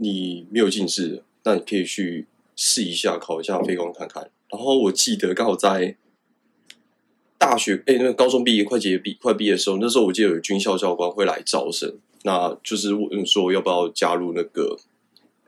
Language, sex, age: Chinese, male, 20-39